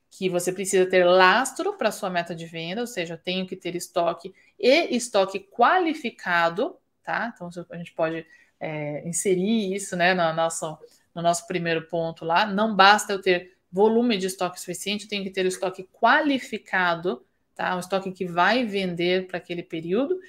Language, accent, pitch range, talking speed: Portuguese, Brazilian, 175-205 Hz, 180 wpm